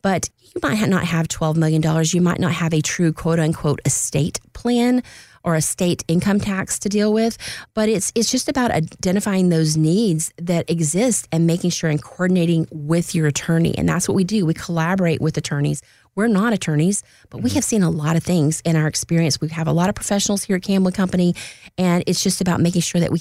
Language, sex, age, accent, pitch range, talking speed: English, female, 30-49, American, 160-190 Hz, 215 wpm